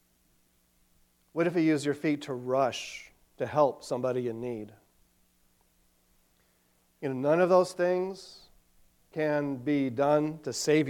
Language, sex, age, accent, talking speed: English, male, 40-59, American, 130 wpm